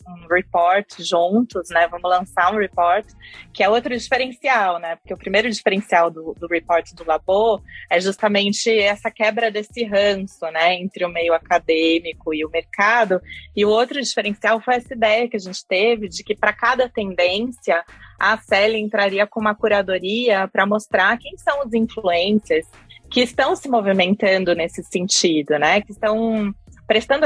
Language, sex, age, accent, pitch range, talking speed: Portuguese, female, 20-39, Brazilian, 175-220 Hz, 165 wpm